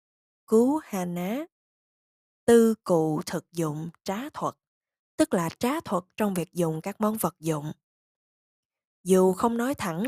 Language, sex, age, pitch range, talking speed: Vietnamese, female, 10-29, 170-225 Hz, 145 wpm